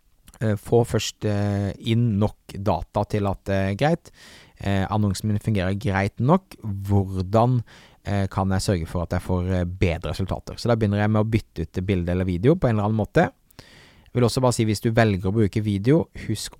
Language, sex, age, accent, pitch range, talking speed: English, male, 30-49, Norwegian, 90-115 Hz, 180 wpm